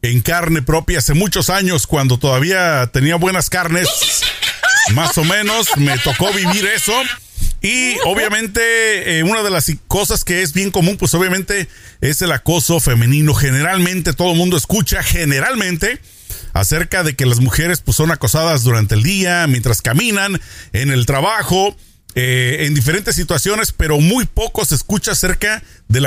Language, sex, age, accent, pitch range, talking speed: Spanish, male, 40-59, Mexican, 130-185 Hz, 155 wpm